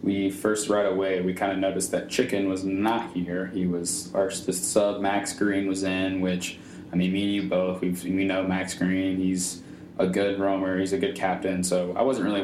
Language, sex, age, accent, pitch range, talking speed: English, male, 20-39, American, 90-100 Hz, 220 wpm